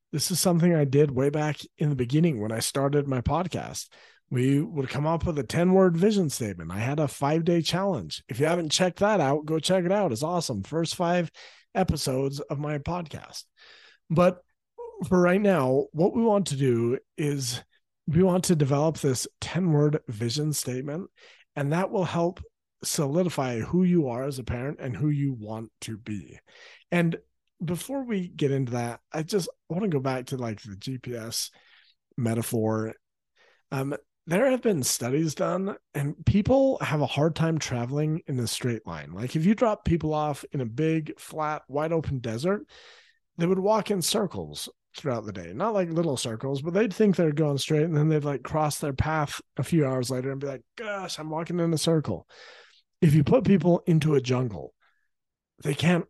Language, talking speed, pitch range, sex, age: English, 190 wpm, 135-175 Hz, male, 40-59